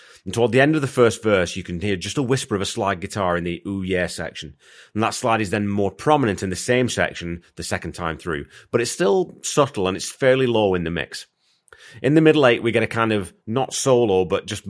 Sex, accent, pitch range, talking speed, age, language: male, British, 90-115 Hz, 250 wpm, 30-49, English